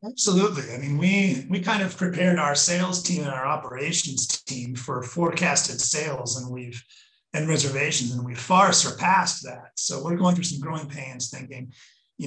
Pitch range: 135-175 Hz